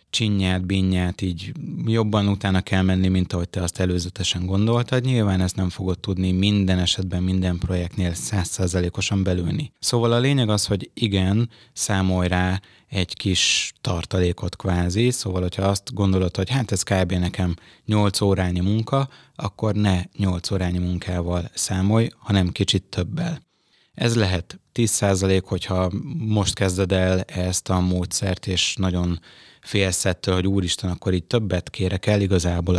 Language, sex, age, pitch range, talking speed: Hungarian, male, 20-39, 90-105 Hz, 145 wpm